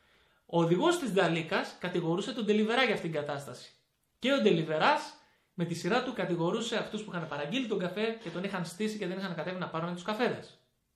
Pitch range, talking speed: 160-215 Hz, 205 wpm